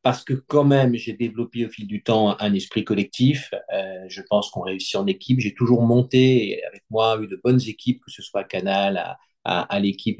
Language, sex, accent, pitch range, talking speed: French, male, French, 105-135 Hz, 225 wpm